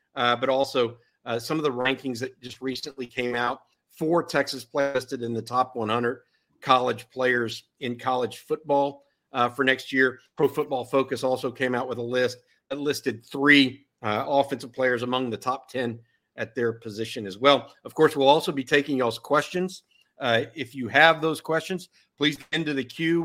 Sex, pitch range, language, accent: male, 120-150 Hz, English, American